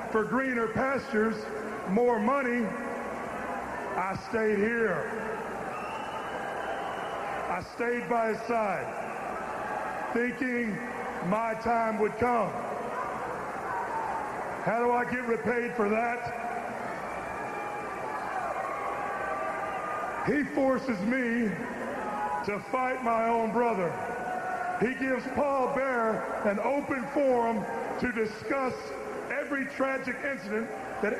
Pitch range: 215-245 Hz